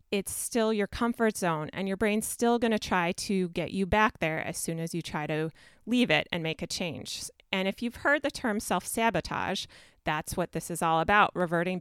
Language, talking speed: English, 220 wpm